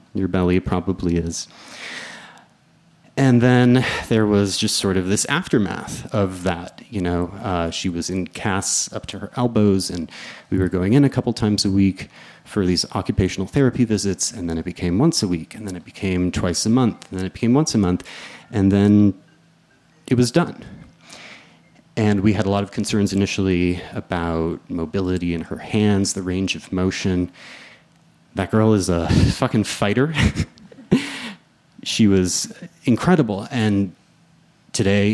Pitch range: 90-115 Hz